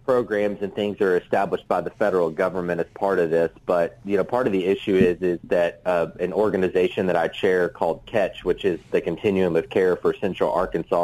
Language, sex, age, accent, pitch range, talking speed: English, male, 30-49, American, 95-115 Hz, 215 wpm